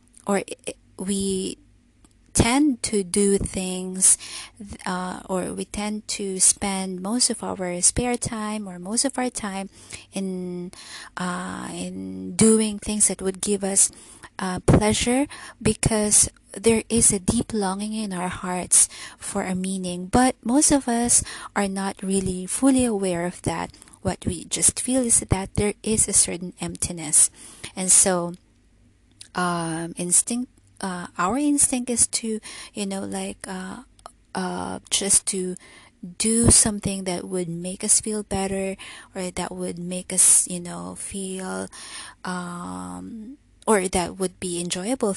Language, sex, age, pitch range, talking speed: English, female, 20-39, 180-220 Hz, 140 wpm